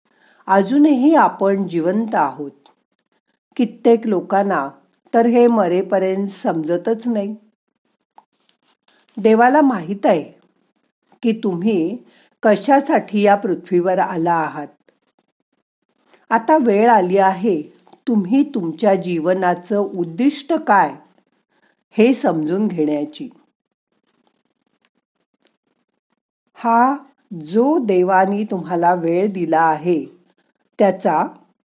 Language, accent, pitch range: Marathi, native, 175-245 Hz